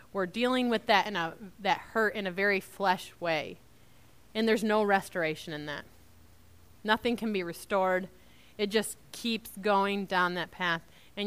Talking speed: 165 wpm